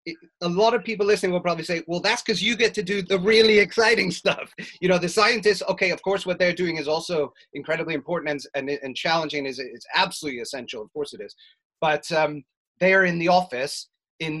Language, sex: English, male